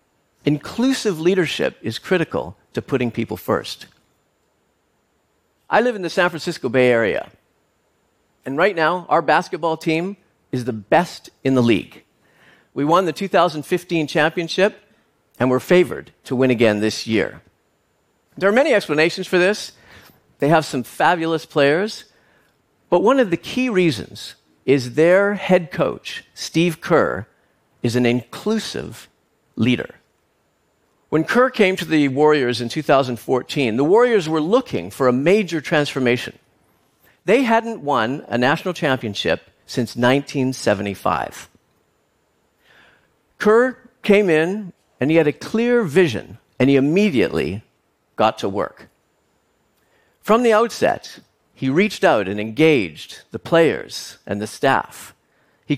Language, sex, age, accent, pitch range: Korean, male, 50-69, American, 130-185 Hz